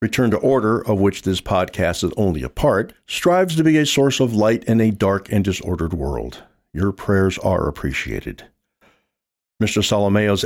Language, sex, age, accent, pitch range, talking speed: English, male, 50-69, American, 95-140 Hz, 170 wpm